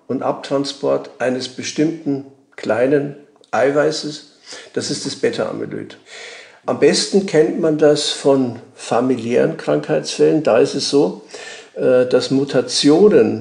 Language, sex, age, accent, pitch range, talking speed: German, male, 50-69, German, 130-160 Hz, 105 wpm